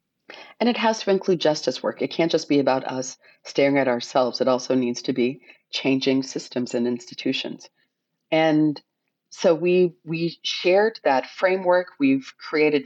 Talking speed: 160 wpm